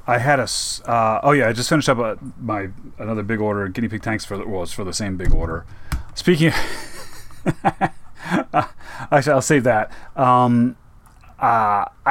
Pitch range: 100-125 Hz